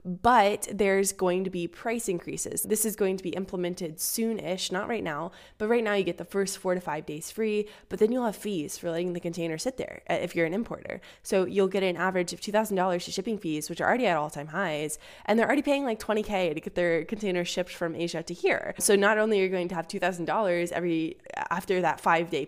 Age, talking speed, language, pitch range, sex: 20-39, 235 wpm, English, 170-210 Hz, female